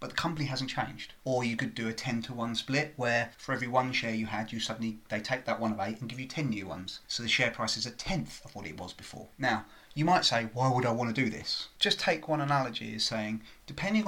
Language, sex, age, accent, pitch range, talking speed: English, male, 30-49, British, 110-140 Hz, 275 wpm